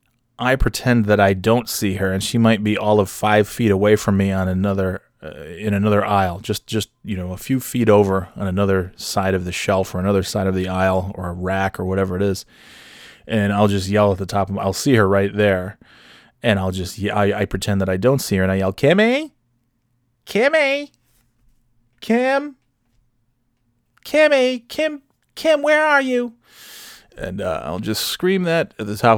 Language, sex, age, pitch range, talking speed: English, male, 30-49, 95-120 Hz, 200 wpm